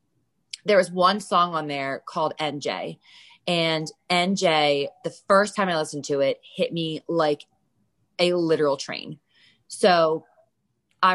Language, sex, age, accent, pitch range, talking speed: English, female, 20-39, American, 150-190 Hz, 135 wpm